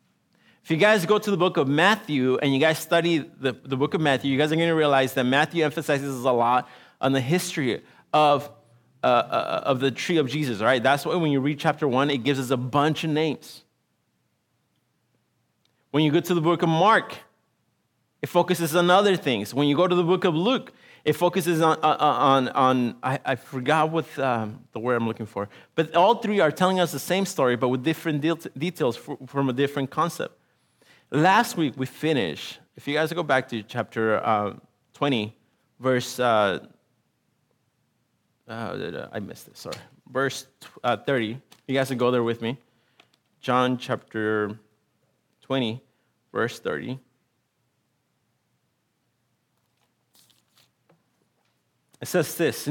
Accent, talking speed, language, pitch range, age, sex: American, 170 wpm, English, 130-165 Hz, 30-49, male